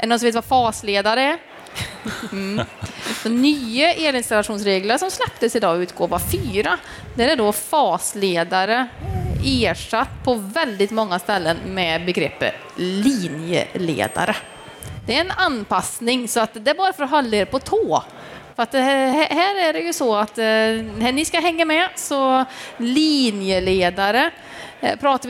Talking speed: 135 wpm